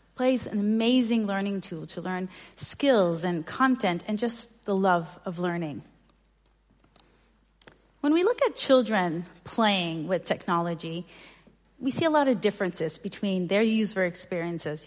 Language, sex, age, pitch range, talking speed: English, female, 40-59, 180-235 Hz, 135 wpm